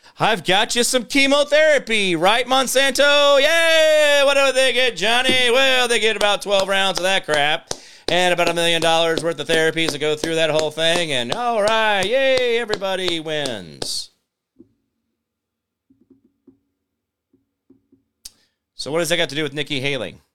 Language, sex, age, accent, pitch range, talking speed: English, male, 40-59, American, 160-260 Hz, 155 wpm